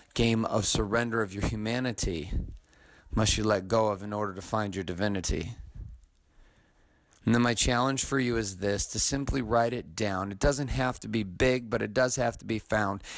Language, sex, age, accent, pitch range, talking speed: English, male, 40-59, American, 105-145 Hz, 195 wpm